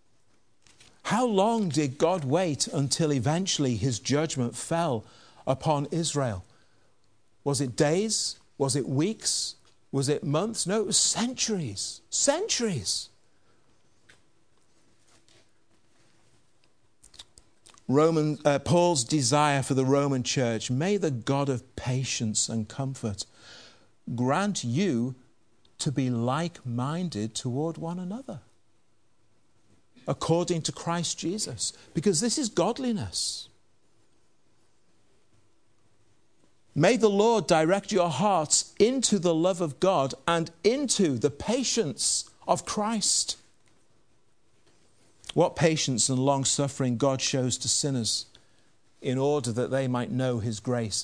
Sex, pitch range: male, 115-165 Hz